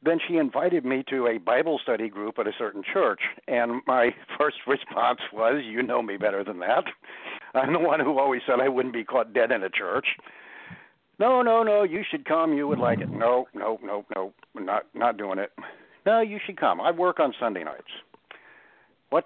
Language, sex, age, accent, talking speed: English, male, 60-79, American, 205 wpm